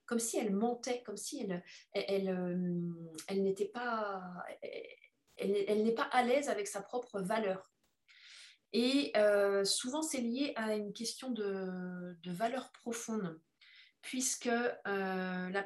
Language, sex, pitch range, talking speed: French, female, 195-245 Hz, 140 wpm